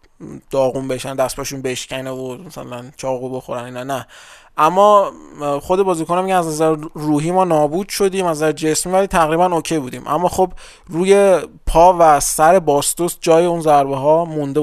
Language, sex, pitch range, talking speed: Persian, male, 140-175 Hz, 160 wpm